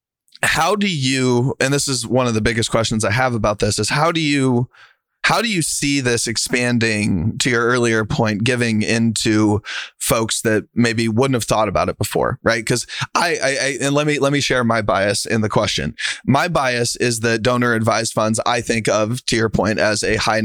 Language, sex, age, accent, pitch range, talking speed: English, male, 30-49, American, 110-130 Hz, 210 wpm